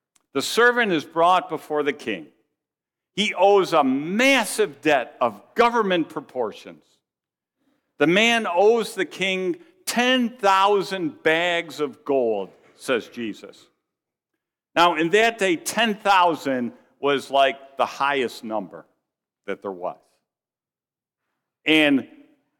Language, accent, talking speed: English, American, 105 wpm